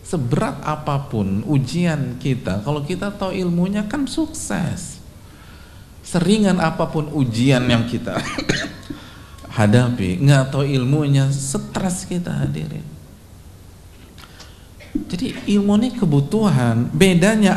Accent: native